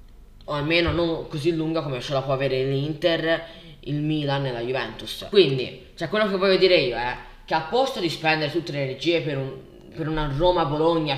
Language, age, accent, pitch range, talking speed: Italian, 10-29, native, 135-175 Hz, 200 wpm